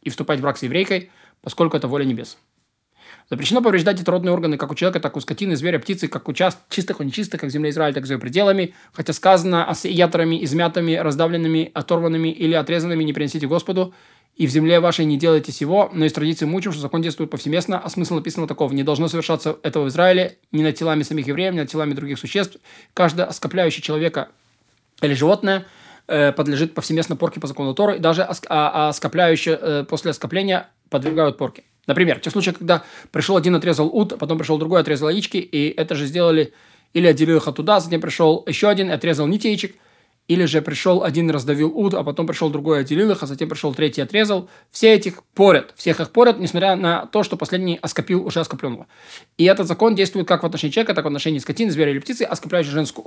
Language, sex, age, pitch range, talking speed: Russian, male, 20-39, 155-185 Hz, 210 wpm